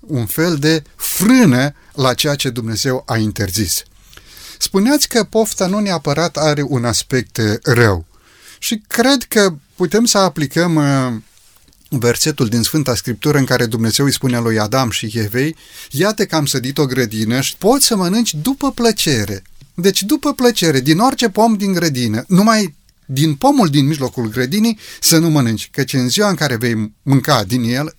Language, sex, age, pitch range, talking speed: Romanian, male, 30-49, 120-160 Hz, 165 wpm